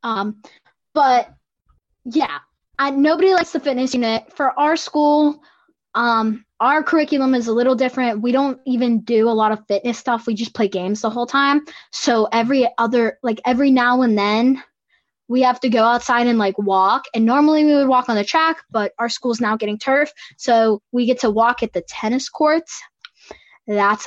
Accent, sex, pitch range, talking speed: American, female, 220-275 Hz, 185 wpm